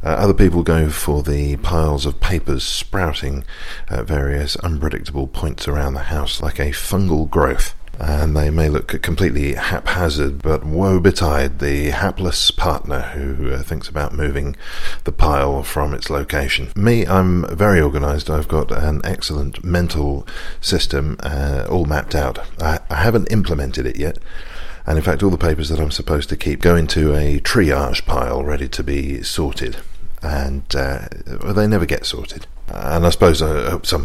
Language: English